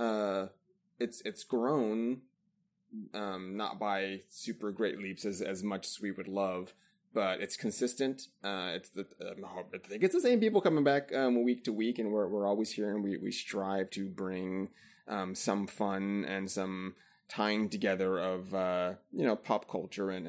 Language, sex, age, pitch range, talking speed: English, male, 20-39, 95-120 Hz, 180 wpm